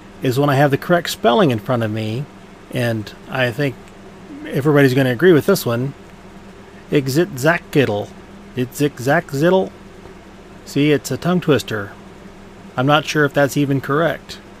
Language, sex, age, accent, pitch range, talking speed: English, male, 30-49, American, 115-145 Hz, 155 wpm